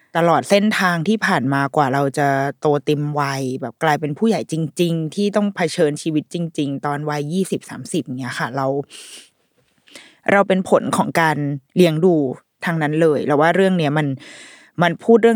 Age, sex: 20-39, female